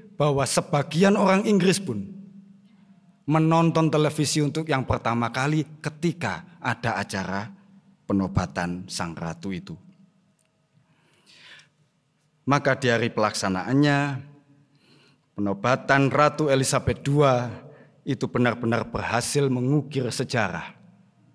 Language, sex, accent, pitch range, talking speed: Indonesian, male, native, 115-170 Hz, 85 wpm